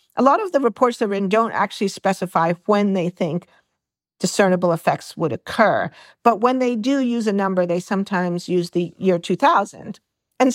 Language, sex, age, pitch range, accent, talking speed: English, female, 50-69, 180-225 Hz, American, 175 wpm